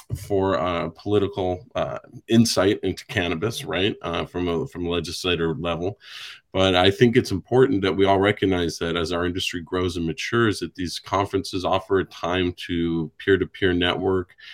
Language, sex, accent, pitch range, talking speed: English, male, American, 85-95 Hz, 165 wpm